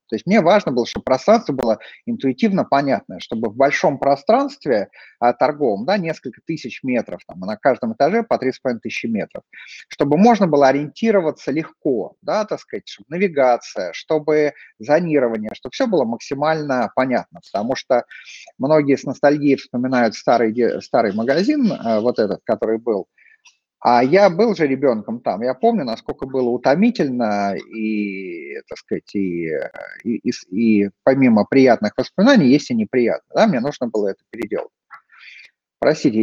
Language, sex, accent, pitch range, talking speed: Russian, male, native, 120-180 Hz, 145 wpm